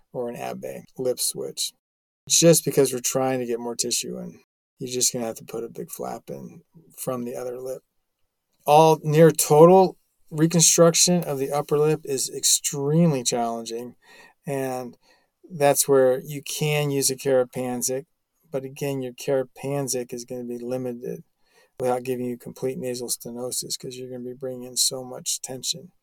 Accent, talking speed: American, 160 wpm